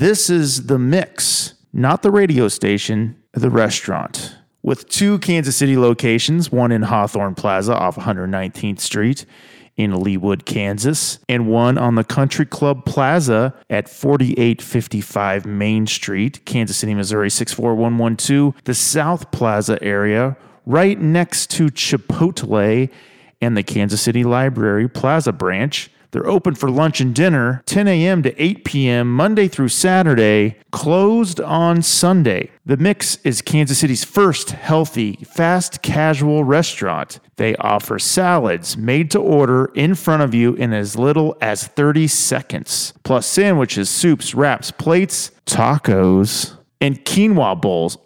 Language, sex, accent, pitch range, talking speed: English, male, American, 115-160 Hz, 130 wpm